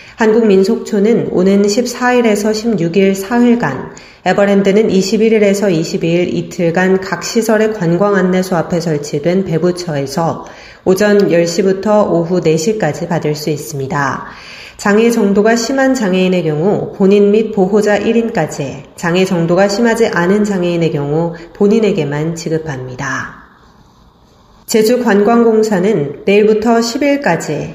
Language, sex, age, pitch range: Korean, female, 30-49, 170-220 Hz